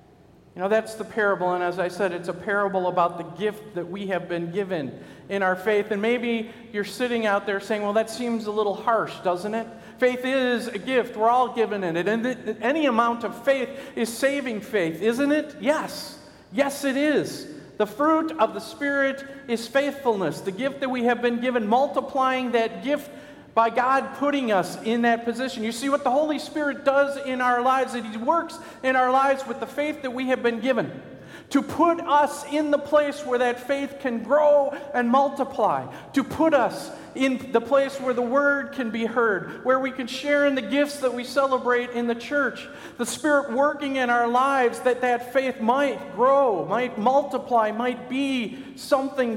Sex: male